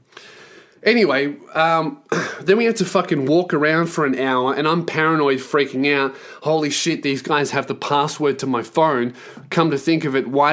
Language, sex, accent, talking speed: English, male, Australian, 190 wpm